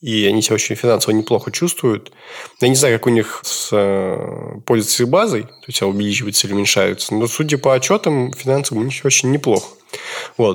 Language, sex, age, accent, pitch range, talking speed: Russian, male, 20-39, native, 110-145 Hz, 175 wpm